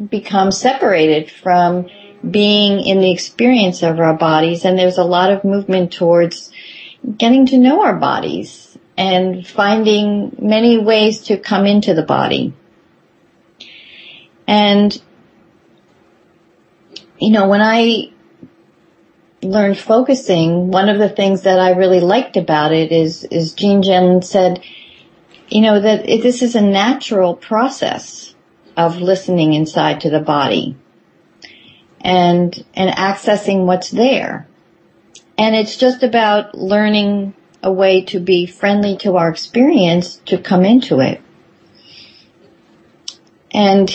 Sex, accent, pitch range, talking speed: female, American, 185-225 Hz, 125 wpm